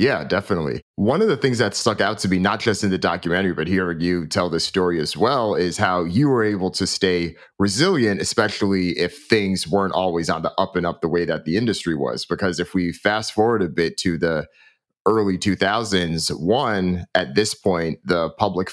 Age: 30-49